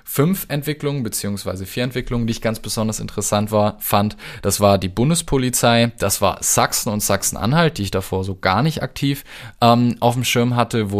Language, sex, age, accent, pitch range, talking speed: German, male, 20-39, German, 100-120 Hz, 185 wpm